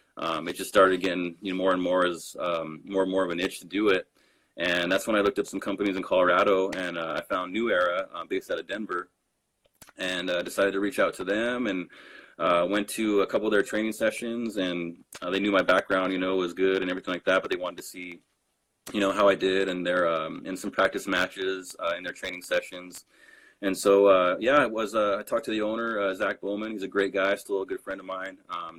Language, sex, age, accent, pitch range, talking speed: English, male, 20-39, American, 90-100 Hz, 255 wpm